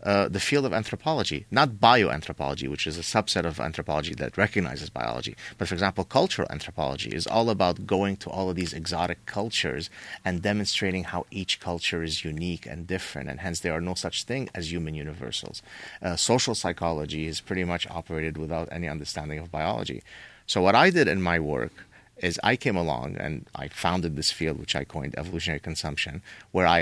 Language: English